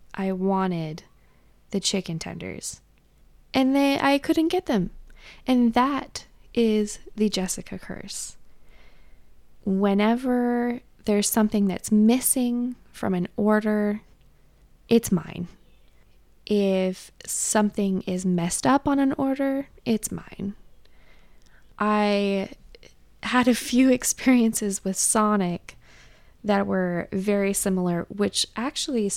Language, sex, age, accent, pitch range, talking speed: English, female, 20-39, American, 185-240 Hz, 100 wpm